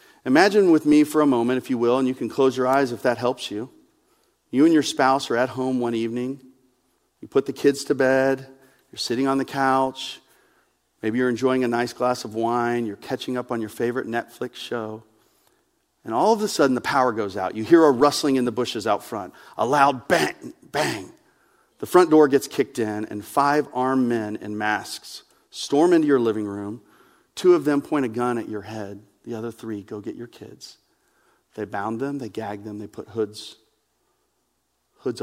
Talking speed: 205 wpm